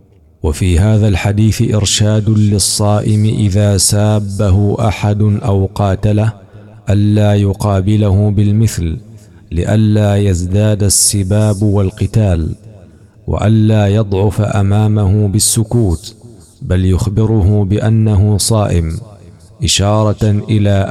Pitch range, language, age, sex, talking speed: 95-105 Hz, Arabic, 50-69, male, 75 wpm